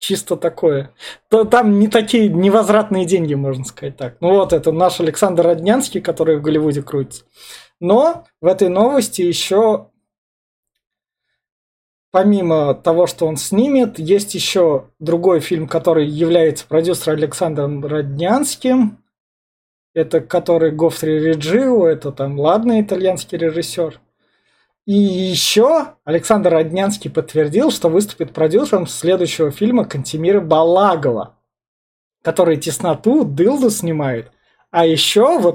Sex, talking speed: male, 115 wpm